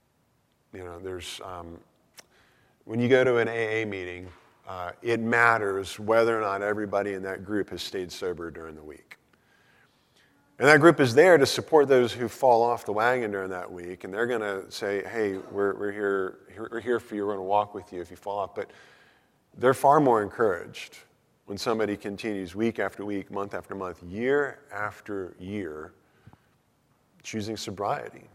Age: 40-59